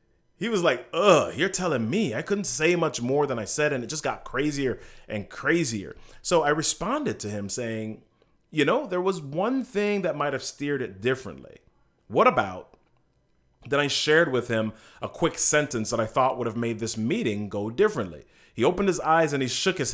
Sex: male